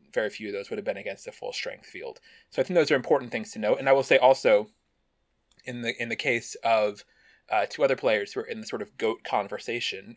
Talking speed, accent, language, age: 255 wpm, American, English, 20-39